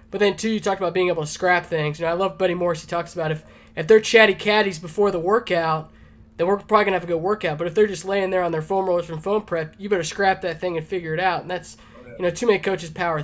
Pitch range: 165-200 Hz